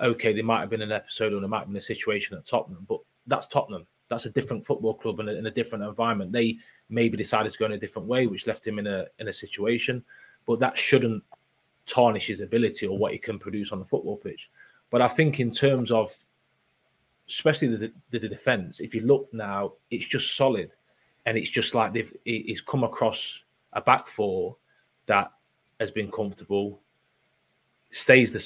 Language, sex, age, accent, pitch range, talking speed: English, male, 30-49, British, 110-130 Hz, 205 wpm